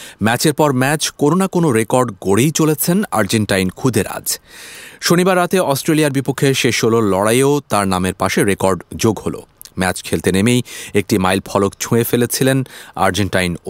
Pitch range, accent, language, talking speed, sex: 95-140 Hz, Indian, English, 130 wpm, male